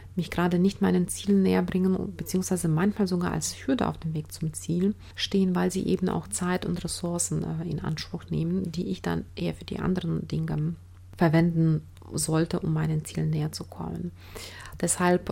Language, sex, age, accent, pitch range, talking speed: German, female, 30-49, German, 155-195 Hz, 180 wpm